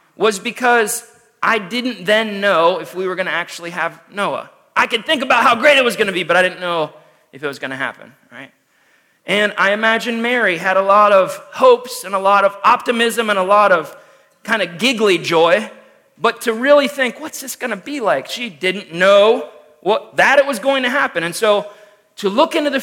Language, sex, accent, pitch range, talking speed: English, male, American, 180-245 Hz, 220 wpm